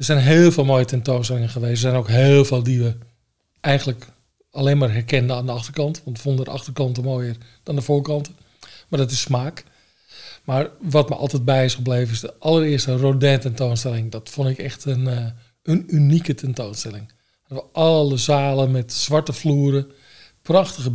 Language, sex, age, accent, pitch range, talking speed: Dutch, male, 50-69, Dutch, 120-145 Hz, 180 wpm